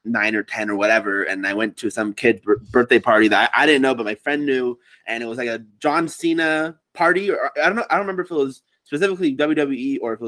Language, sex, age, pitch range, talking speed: English, male, 20-39, 120-165 Hz, 270 wpm